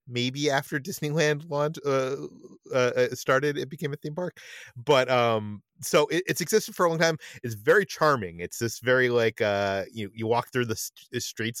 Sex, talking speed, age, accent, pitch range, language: male, 180 wpm, 30-49, American, 110-140 Hz, English